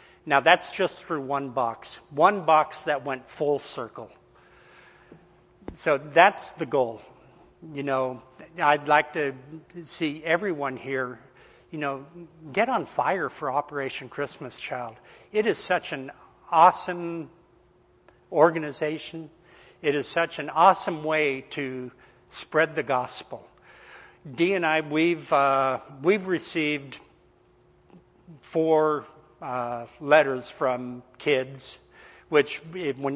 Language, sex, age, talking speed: English, male, 60-79, 115 wpm